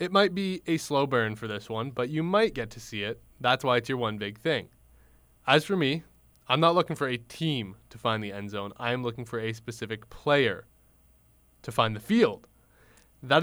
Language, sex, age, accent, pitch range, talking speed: English, male, 20-39, American, 110-140 Hz, 220 wpm